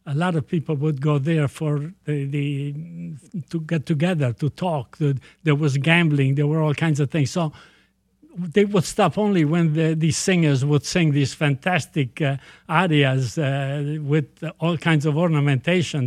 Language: English